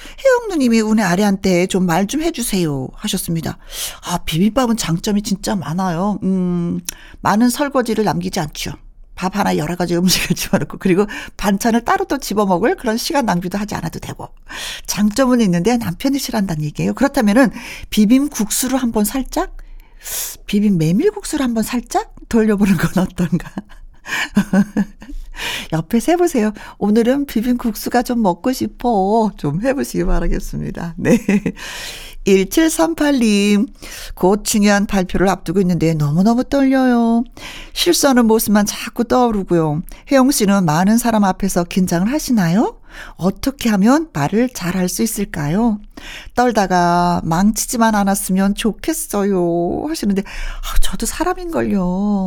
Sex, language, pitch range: female, Korean, 185-250 Hz